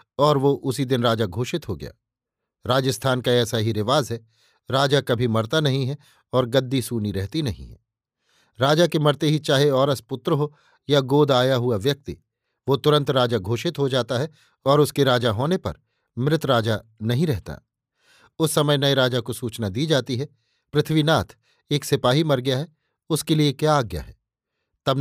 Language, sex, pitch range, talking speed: Hindi, male, 120-145 Hz, 180 wpm